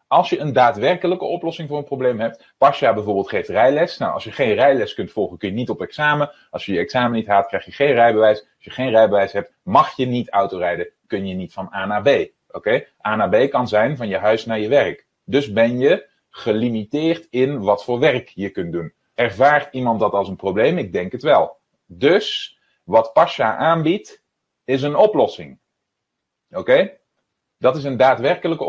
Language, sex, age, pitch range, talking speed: Dutch, male, 30-49, 110-150 Hz, 205 wpm